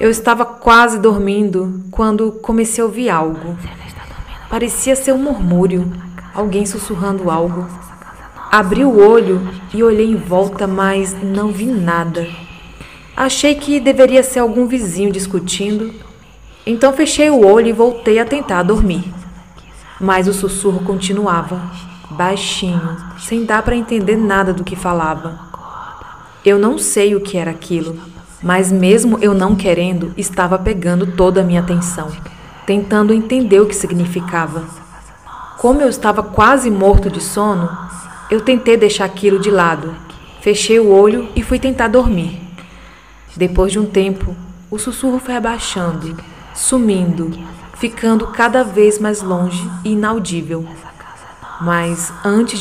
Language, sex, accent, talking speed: Portuguese, female, Brazilian, 135 wpm